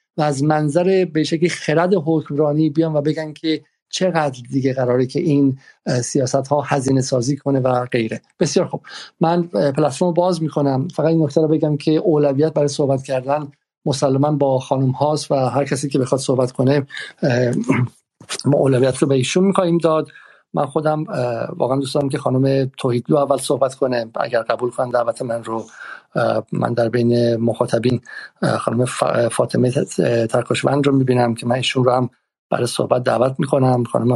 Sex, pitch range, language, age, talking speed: male, 125-155 Hz, Persian, 50-69, 160 wpm